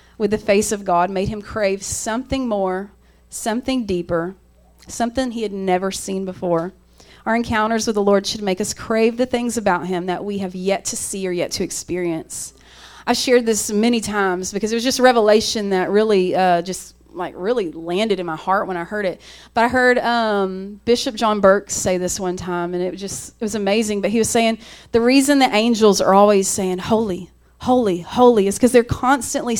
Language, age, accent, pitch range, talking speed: English, 30-49, American, 195-250 Hz, 205 wpm